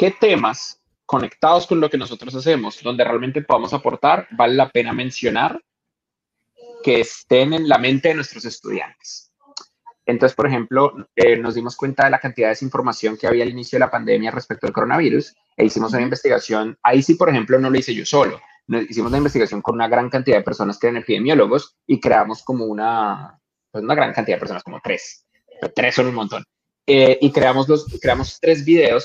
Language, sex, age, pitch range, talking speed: Spanish, male, 20-39, 115-150 Hz, 200 wpm